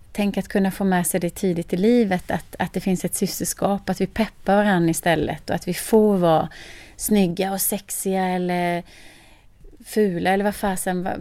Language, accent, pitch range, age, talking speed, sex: Swedish, native, 170-195 Hz, 30-49, 180 wpm, female